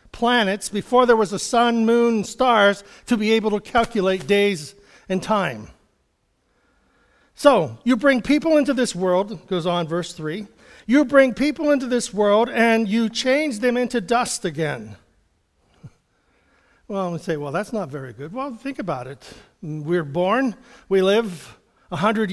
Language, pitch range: English, 180-250 Hz